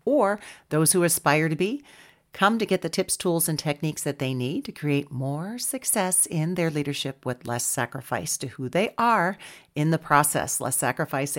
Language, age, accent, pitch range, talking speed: English, 40-59, American, 140-175 Hz, 190 wpm